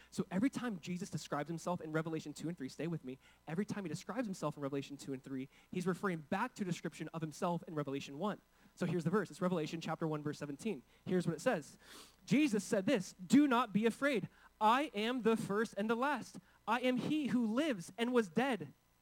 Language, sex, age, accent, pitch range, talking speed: English, male, 20-39, American, 165-230 Hz, 225 wpm